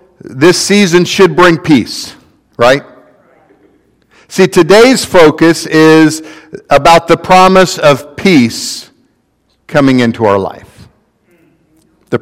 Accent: American